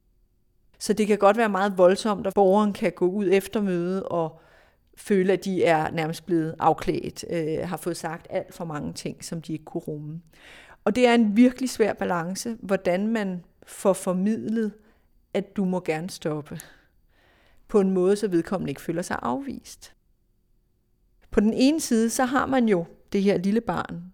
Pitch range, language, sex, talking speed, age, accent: 170-200 Hz, Danish, female, 180 wpm, 30-49, native